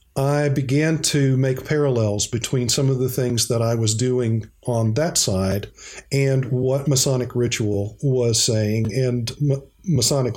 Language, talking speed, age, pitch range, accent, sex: English, 145 wpm, 50-69, 110-140 Hz, American, male